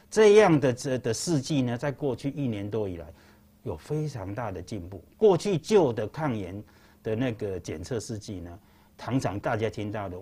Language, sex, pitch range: Chinese, male, 105-145 Hz